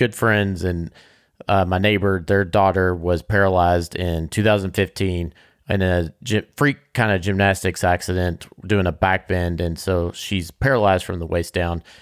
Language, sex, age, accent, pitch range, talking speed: English, male, 30-49, American, 90-110 Hz, 155 wpm